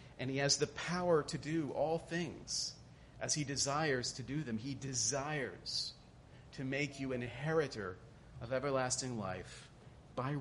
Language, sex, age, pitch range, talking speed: English, male, 40-59, 130-165 Hz, 150 wpm